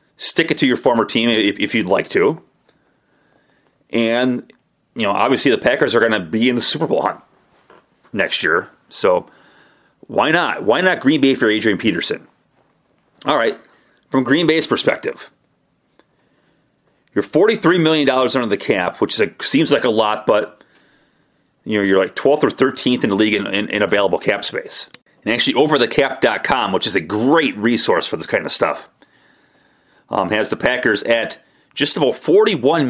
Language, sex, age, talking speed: English, male, 30-49, 170 wpm